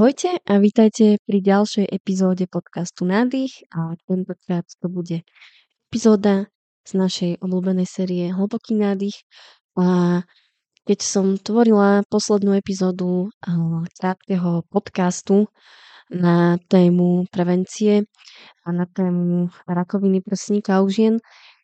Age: 20-39